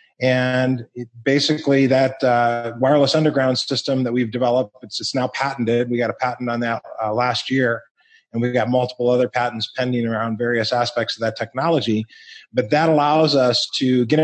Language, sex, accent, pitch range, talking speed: English, male, American, 115-135 Hz, 175 wpm